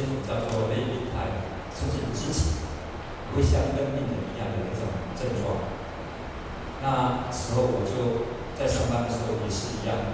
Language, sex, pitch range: Chinese, male, 95-120 Hz